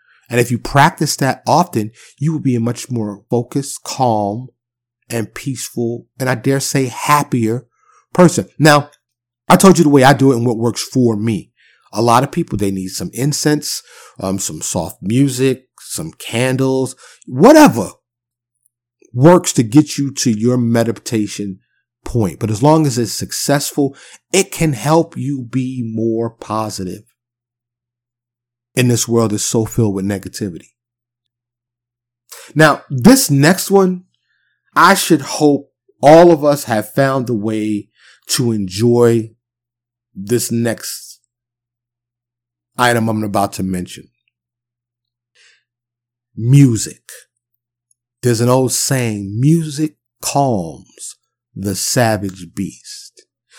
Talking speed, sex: 125 wpm, male